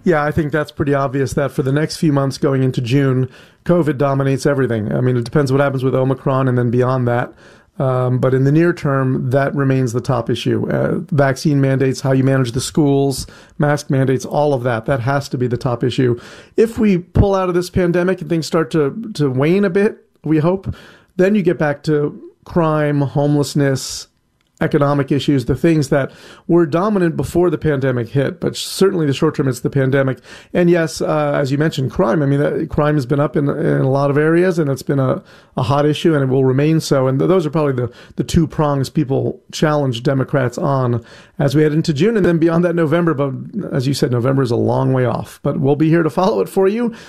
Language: English